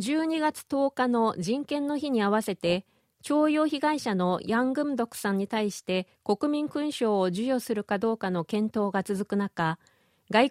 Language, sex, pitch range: Japanese, female, 190-255 Hz